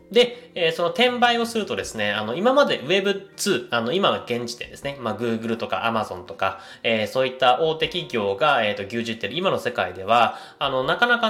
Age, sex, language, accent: 20-39, male, Japanese, native